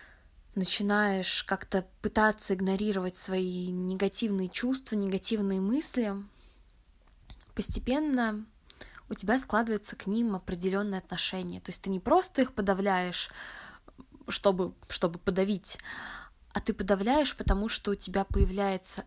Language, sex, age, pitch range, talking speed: Russian, female, 20-39, 185-205 Hz, 110 wpm